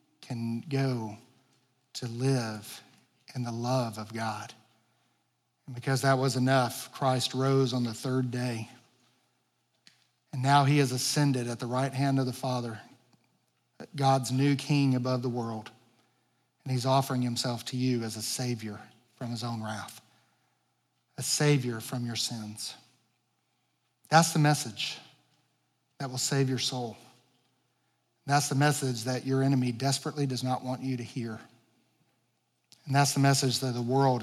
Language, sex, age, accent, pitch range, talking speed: English, male, 40-59, American, 120-135 Hz, 145 wpm